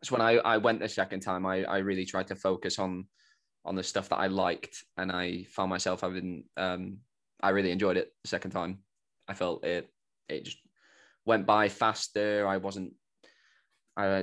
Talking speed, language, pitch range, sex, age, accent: 185 wpm, English, 95-105 Hz, male, 20-39, British